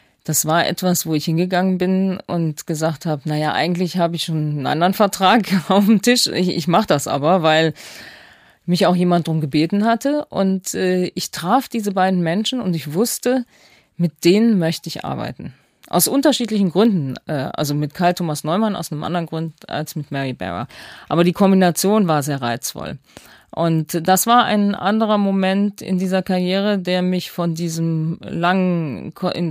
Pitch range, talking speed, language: 165-195 Hz, 170 wpm, German